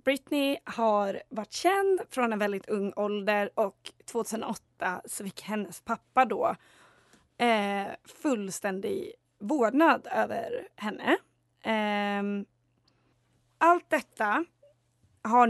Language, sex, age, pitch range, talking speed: Swedish, female, 20-39, 210-265 Hz, 95 wpm